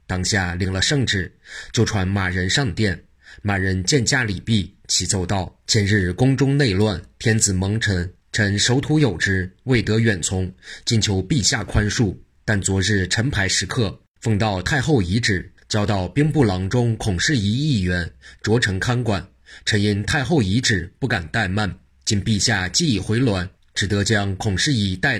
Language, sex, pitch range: Chinese, male, 95-115 Hz